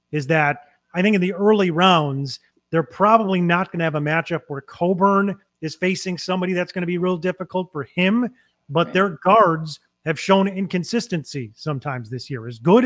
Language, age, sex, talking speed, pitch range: English, 30-49, male, 185 wpm, 155-190 Hz